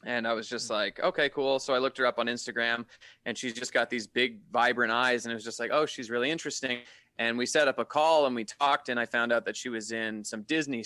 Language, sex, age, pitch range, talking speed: English, male, 20-39, 115-130 Hz, 275 wpm